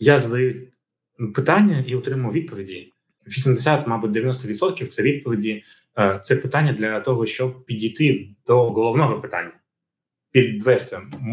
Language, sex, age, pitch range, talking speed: Ukrainian, male, 30-49, 105-135 Hz, 110 wpm